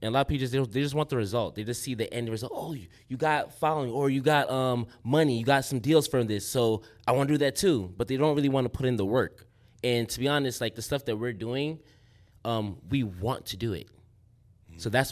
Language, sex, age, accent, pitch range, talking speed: English, male, 20-39, American, 105-130 Hz, 280 wpm